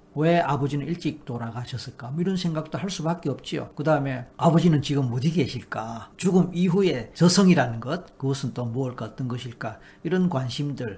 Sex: male